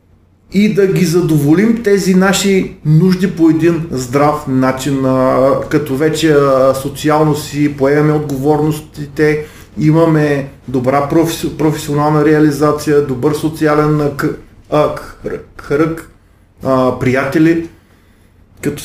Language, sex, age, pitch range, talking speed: Bulgarian, male, 30-49, 135-175 Hz, 85 wpm